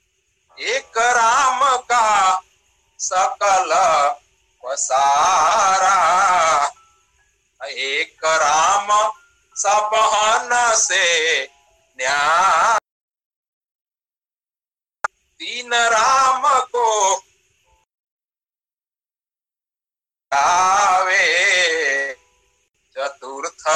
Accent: native